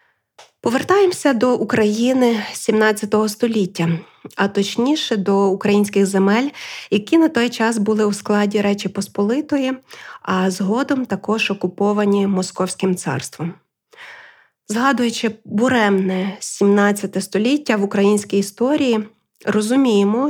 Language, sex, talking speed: Ukrainian, female, 100 wpm